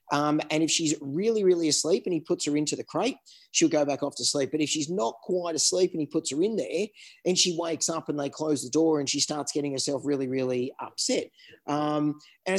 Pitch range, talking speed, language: 145-175 Hz, 245 wpm, English